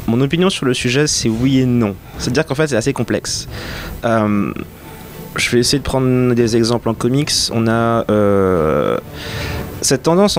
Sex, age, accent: male, 30-49, French